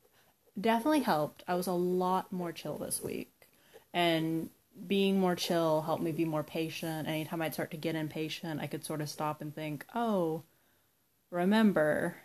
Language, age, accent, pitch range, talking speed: English, 20-39, American, 155-185 Hz, 165 wpm